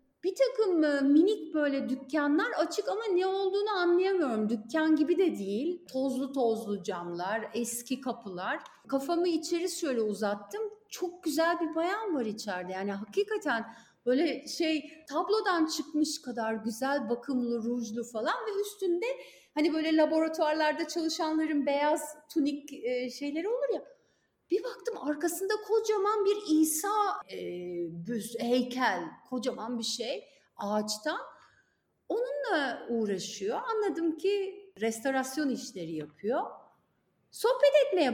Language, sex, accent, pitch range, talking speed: Turkish, female, native, 240-385 Hz, 115 wpm